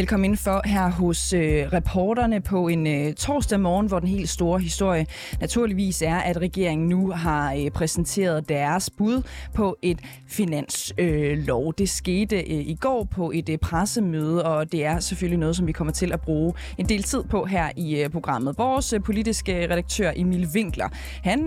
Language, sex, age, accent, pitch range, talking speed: Danish, female, 20-39, native, 160-210 Hz, 180 wpm